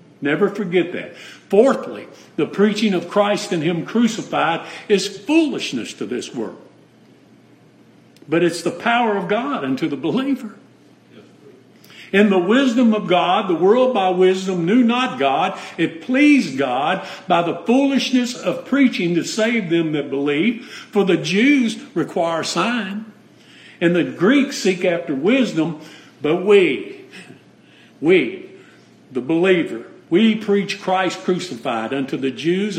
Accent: American